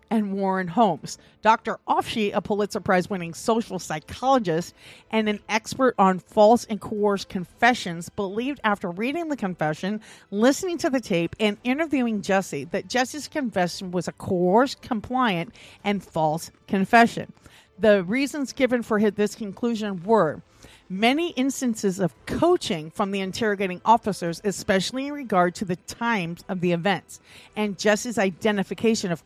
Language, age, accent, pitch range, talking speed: English, 50-69, American, 185-240 Hz, 140 wpm